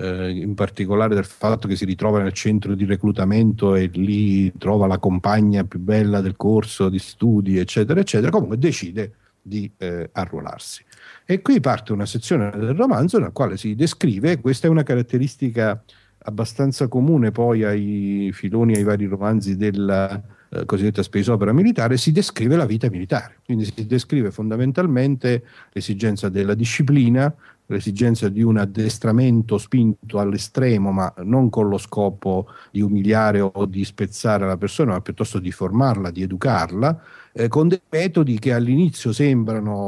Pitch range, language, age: 100-120 Hz, Italian, 50-69